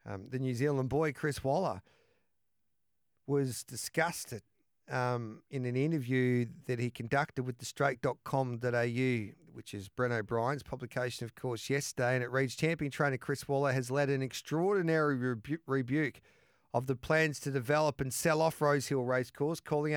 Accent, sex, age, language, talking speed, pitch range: Australian, male, 40-59, English, 155 wpm, 130-160 Hz